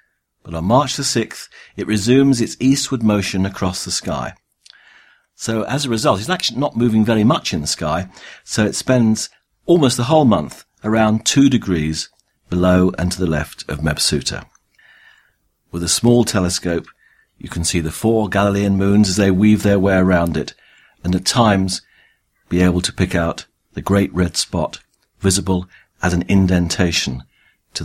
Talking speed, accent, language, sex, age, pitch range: 165 wpm, British, English, male, 50-69, 90-115 Hz